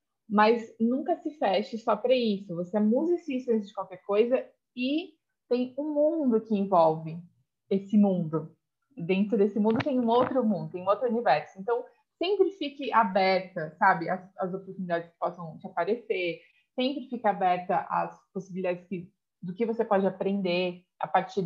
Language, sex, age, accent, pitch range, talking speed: Portuguese, female, 20-39, Brazilian, 180-250 Hz, 160 wpm